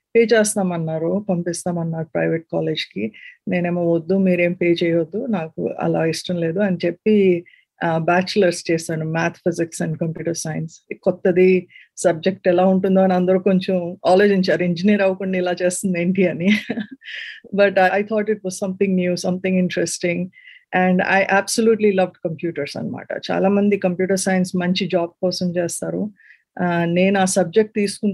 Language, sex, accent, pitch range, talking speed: Telugu, female, native, 175-200 Hz, 135 wpm